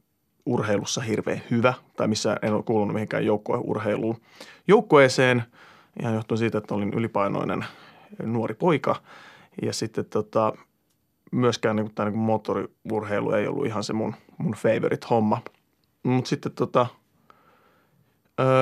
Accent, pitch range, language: native, 115-140 Hz, Finnish